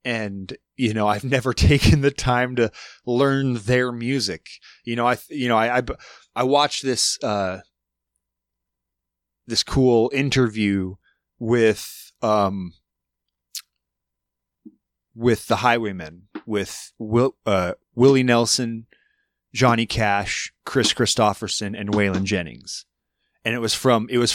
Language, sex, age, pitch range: English, male, 30-49, 95-125 Hz